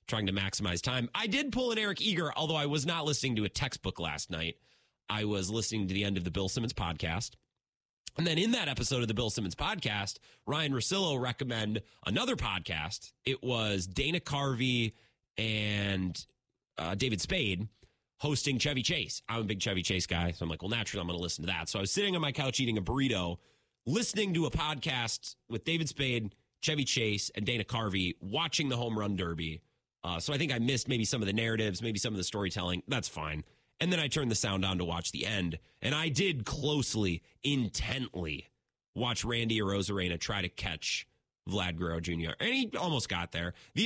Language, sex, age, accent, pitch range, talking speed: English, male, 30-49, American, 95-145 Hz, 205 wpm